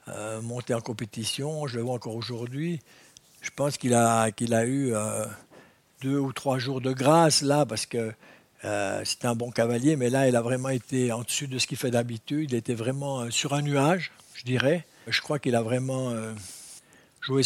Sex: male